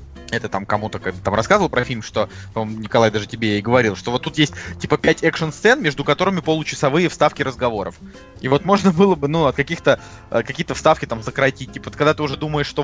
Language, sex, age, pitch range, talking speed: Russian, male, 20-39, 125-160 Hz, 210 wpm